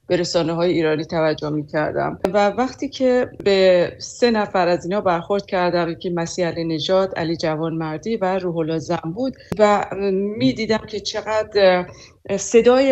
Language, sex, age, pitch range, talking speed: Persian, female, 40-59, 170-215 Hz, 150 wpm